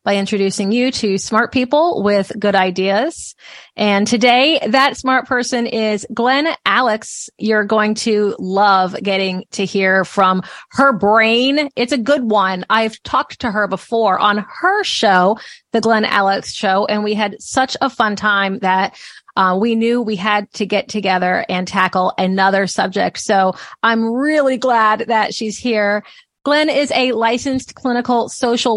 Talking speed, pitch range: 160 wpm, 195-250 Hz